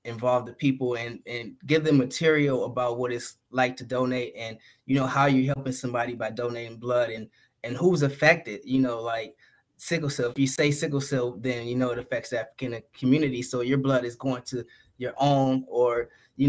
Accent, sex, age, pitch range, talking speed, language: American, male, 20-39, 125-135 Hz, 205 wpm, English